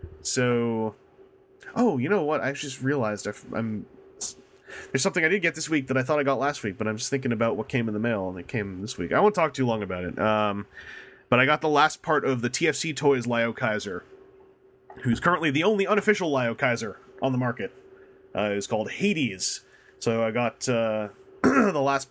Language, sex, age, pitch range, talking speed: English, male, 30-49, 115-175 Hz, 210 wpm